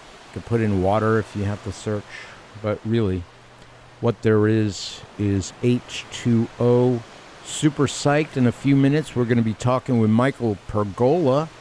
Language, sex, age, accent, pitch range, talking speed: English, male, 50-69, American, 115-140 Hz, 155 wpm